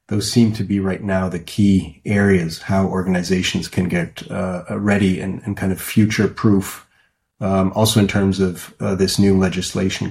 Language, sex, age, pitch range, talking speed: English, male, 30-49, 95-110 Hz, 180 wpm